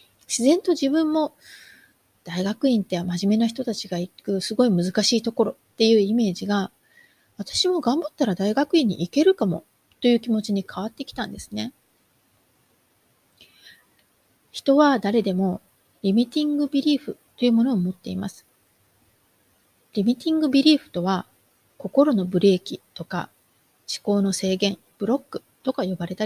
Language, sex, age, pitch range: Japanese, female, 30-49, 185-250 Hz